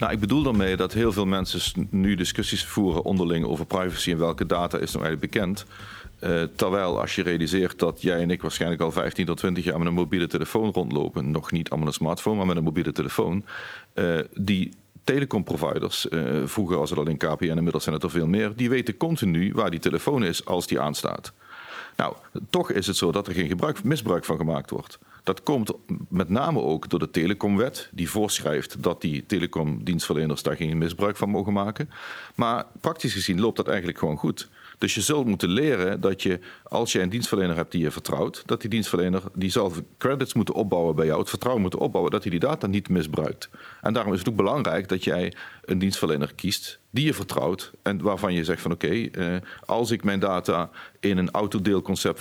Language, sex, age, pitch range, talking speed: Dutch, male, 40-59, 85-100 Hz, 210 wpm